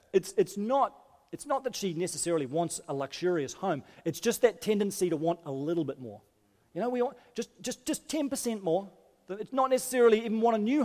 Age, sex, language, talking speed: 30-49, male, English, 210 wpm